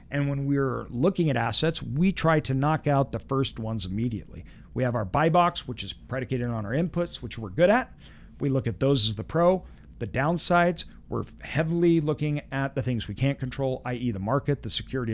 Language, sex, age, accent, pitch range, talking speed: English, male, 50-69, American, 115-140 Hz, 210 wpm